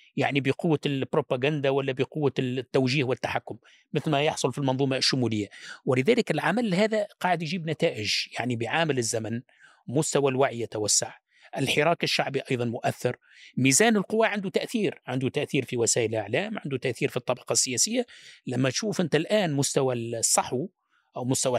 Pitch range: 130-200 Hz